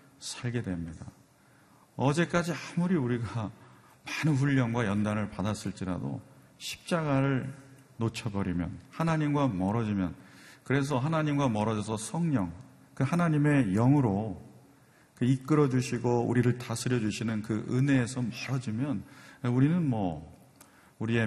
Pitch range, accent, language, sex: 95-135 Hz, native, Korean, male